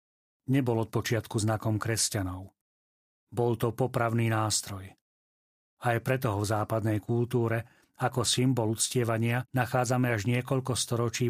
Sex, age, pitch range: male, 40-59, 105-125 Hz